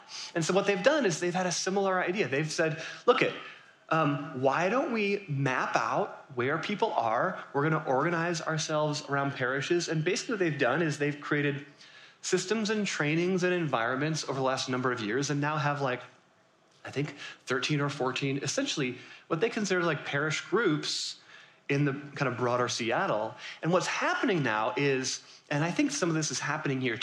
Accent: American